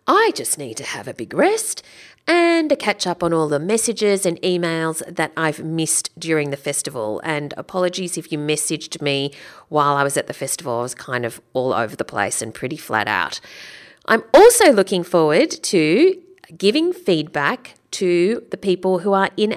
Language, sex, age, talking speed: English, female, 40-59, 185 wpm